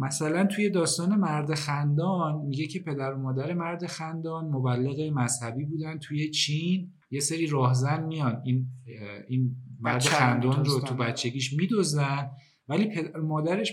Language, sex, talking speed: Persian, male, 135 wpm